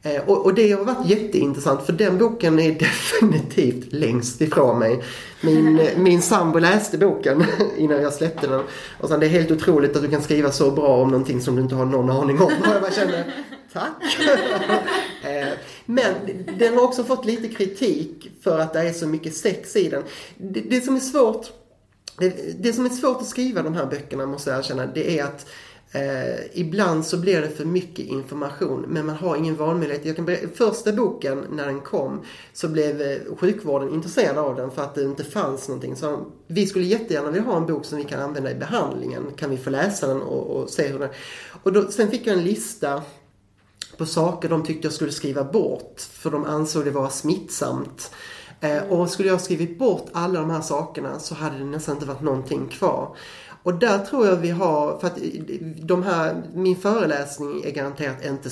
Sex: male